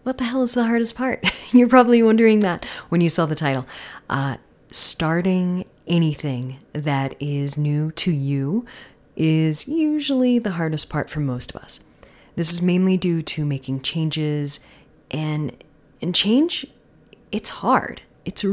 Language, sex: English, female